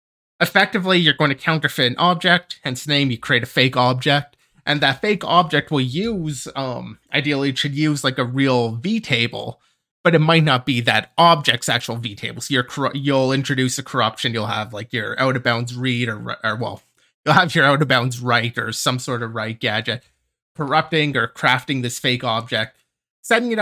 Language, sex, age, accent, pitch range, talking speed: English, male, 30-49, American, 120-155 Hz, 185 wpm